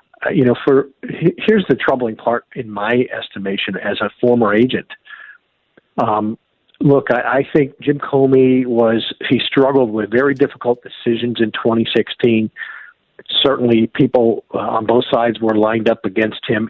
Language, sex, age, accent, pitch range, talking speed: English, male, 50-69, American, 110-130 Hz, 145 wpm